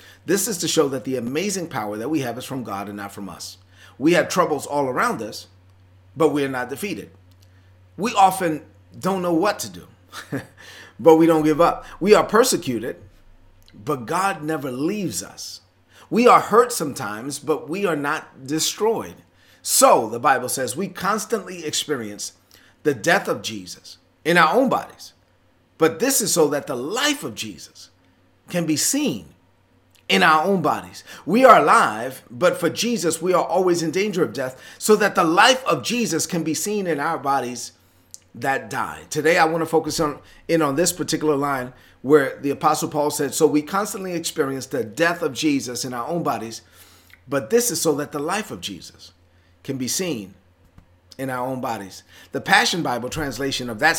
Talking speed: 185 wpm